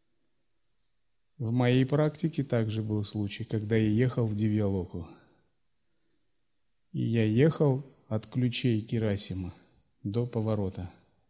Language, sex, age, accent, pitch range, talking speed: Russian, male, 30-49, native, 105-125 Hz, 100 wpm